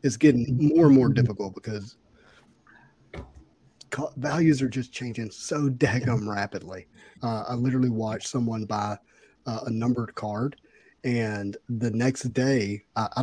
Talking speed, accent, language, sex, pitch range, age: 135 wpm, American, English, male, 115-140 Hz, 40-59